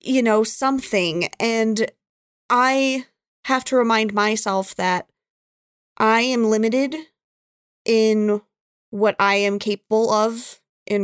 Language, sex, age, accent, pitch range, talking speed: English, female, 30-49, American, 200-260 Hz, 110 wpm